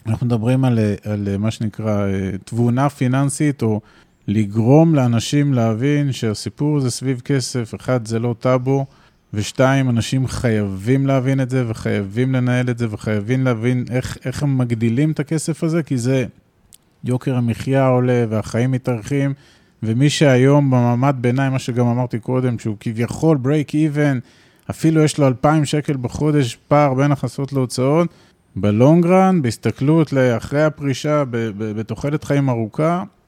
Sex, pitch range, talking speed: male, 115-145 Hz, 135 wpm